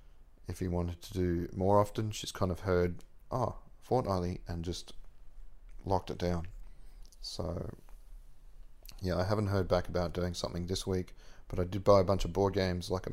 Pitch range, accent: 85-100 Hz, Australian